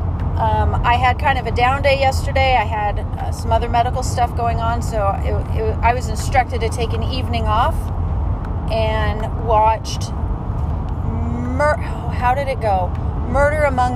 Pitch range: 85-100 Hz